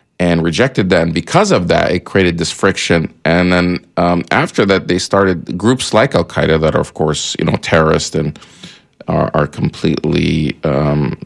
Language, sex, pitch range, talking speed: English, male, 80-105 Hz, 180 wpm